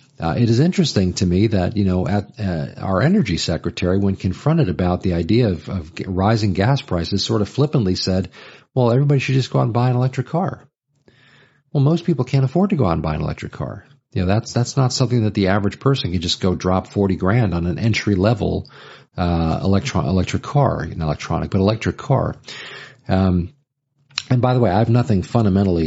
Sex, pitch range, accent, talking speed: male, 90-130 Hz, American, 210 wpm